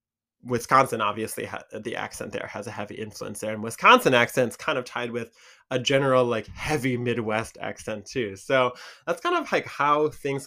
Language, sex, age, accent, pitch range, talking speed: English, male, 20-39, American, 110-130 Hz, 180 wpm